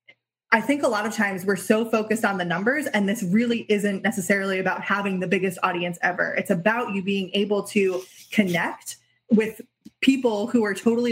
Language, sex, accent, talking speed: English, female, American, 190 wpm